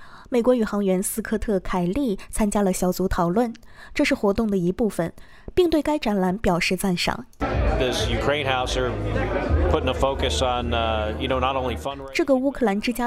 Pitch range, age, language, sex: 180-235 Hz, 20-39, Chinese, female